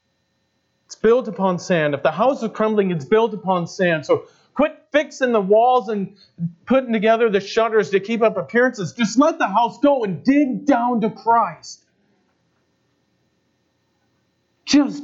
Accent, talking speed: American, 150 wpm